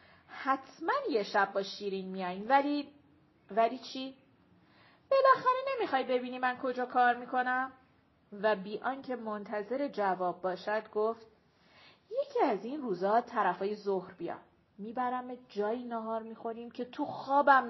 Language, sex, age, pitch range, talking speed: Persian, female, 40-59, 210-290 Hz, 135 wpm